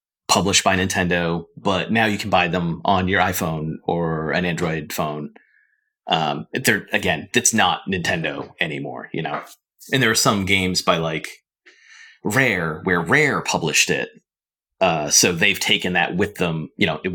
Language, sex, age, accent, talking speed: English, male, 30-49, American, 165 wpm